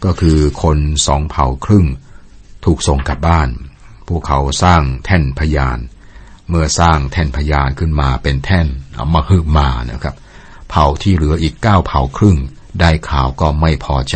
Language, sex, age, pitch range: Thai, male, 60-79, 70-90 Hz